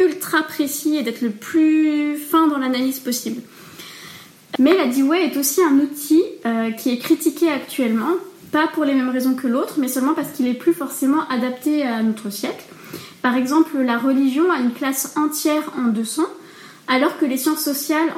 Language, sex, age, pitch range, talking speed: French, female, 20-39, 250-320 Hz, 180 wpm